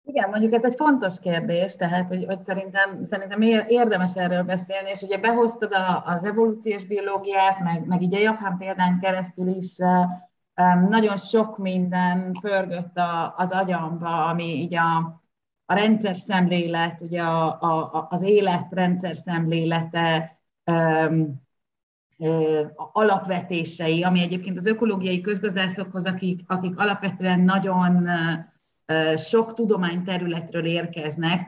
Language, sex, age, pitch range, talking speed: Hungarian, female, 30-49, 165-200 Hz, 120 wpm